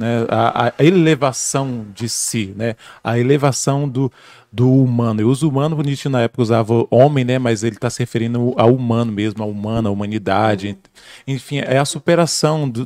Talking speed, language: 175 wpm, Portuguese